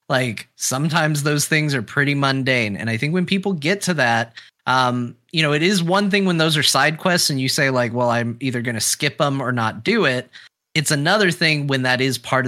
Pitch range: 125-160 Hz